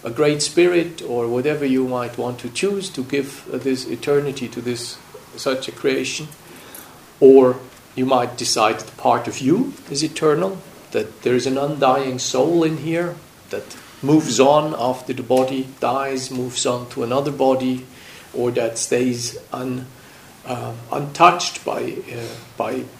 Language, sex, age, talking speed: English, male, 50-69, 150 wpm